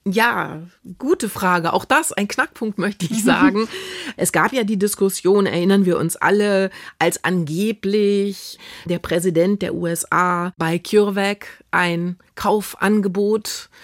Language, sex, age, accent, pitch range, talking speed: German, female, 30-49, German, 170-205 Hz, 125 wpm